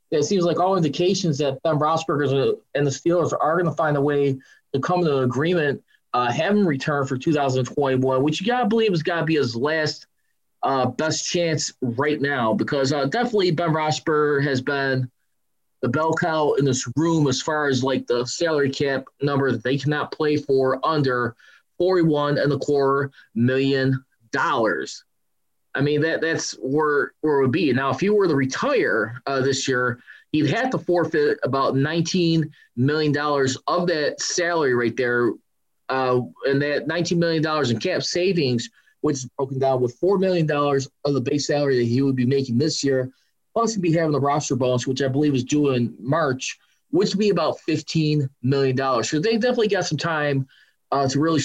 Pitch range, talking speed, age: 135-160 Hz, 190 wpm, 20-39